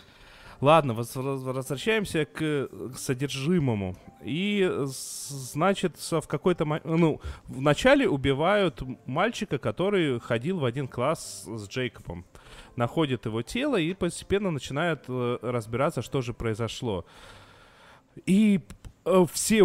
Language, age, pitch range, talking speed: Russian, 20-39, 120-155 Hz, 95 wpm